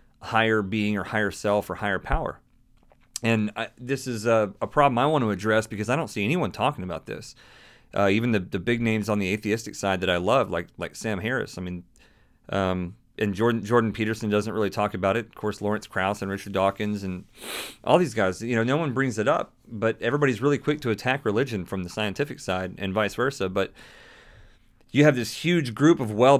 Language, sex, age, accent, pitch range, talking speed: English, male, 30-49, American, 100-120 Hz, 215 wpm